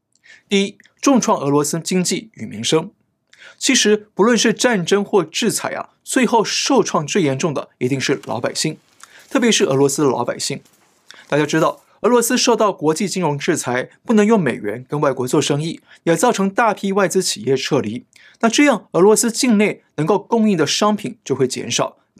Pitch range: 150-215 Hz